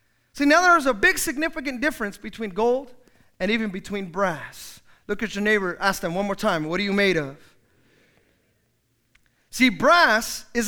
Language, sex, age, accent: English, male, 30-49, American